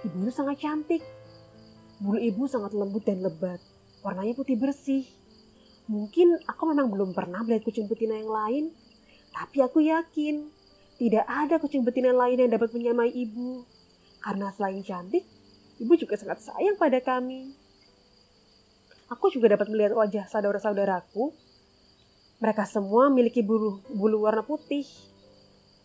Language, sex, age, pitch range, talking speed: Indonesian, female, 20-39, 205-255 Hz, 130 wpm